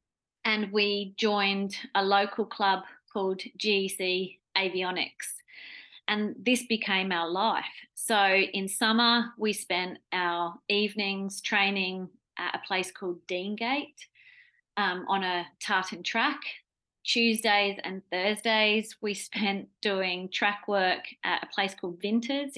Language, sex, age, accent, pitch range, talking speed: English, female, 30-49, Australian, 180-215 Hz, 120 wpm